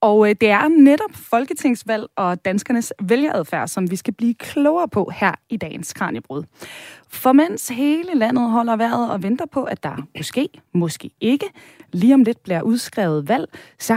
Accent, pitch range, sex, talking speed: native, 195-275 Hz, female, 170 wpm